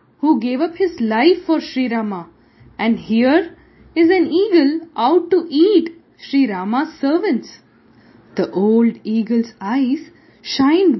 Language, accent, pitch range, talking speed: English, Indian, 225-320 Hz, 130 wpm